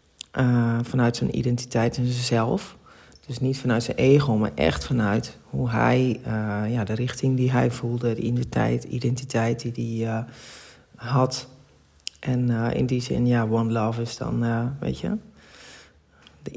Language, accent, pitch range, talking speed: Dutch, Dutch, 115-135 Hz, 160 wpm